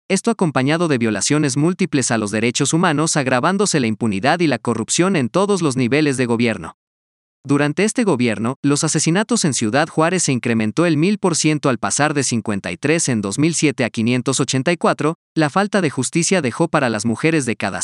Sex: male